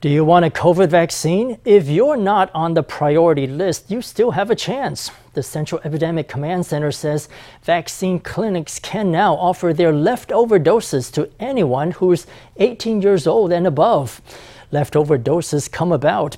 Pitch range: 150-185 Hz